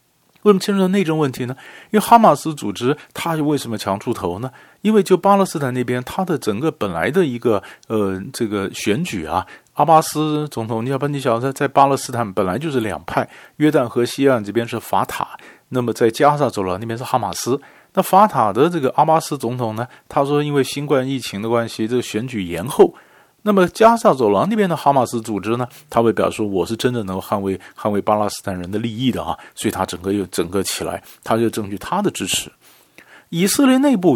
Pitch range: 100-150 Hz